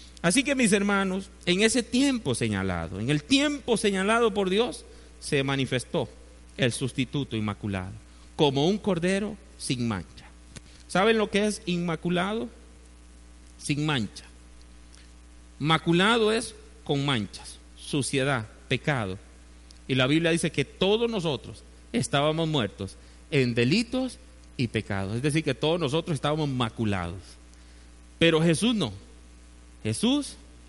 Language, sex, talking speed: Spanish, male, 120 wpm